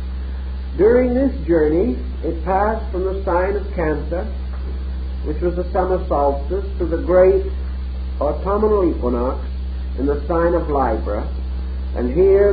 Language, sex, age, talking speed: English, male, 50-69, 130 wpm